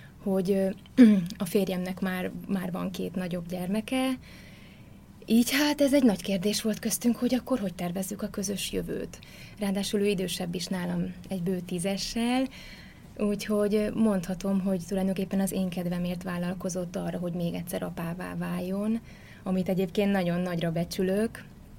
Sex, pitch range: female, 180-205 Hz